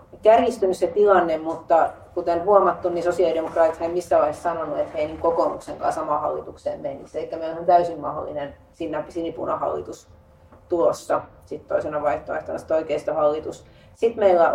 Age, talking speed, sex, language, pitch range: 30-49, 140 wpm, female, Finnish, 165-200 Hz